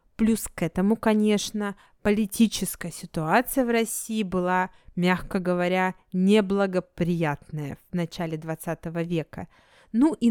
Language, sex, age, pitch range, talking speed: Russian, female, 20-39, 180-230 Hz, 105 wpm